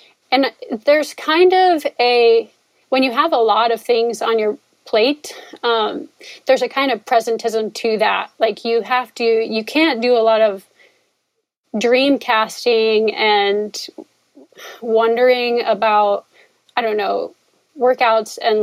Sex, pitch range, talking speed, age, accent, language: female, 210-255 Hz, 140 wpm, 30-49, American, English